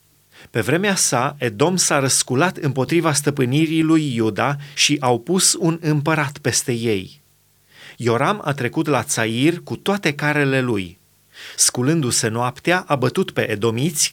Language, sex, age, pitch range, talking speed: Romanian, male, 30-49, 120-160 Hz, 135 wpm